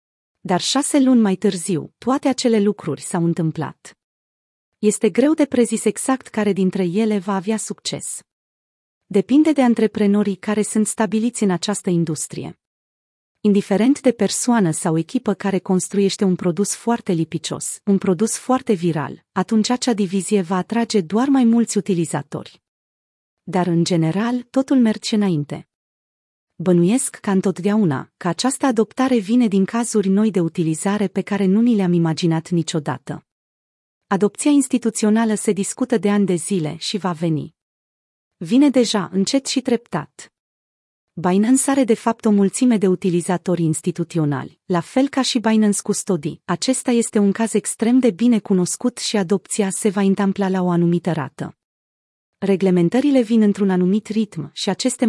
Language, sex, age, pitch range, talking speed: Romanian, female, 30-49, 170-225 Hz, 145 wpm